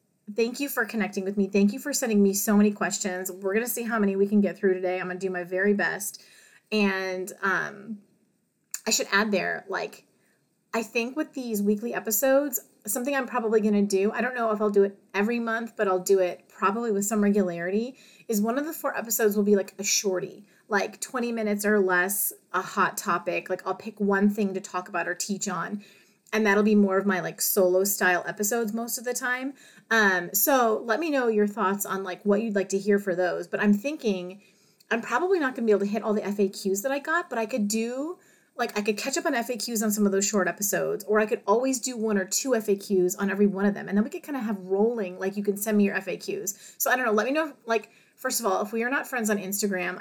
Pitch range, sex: 195-230 Hz, female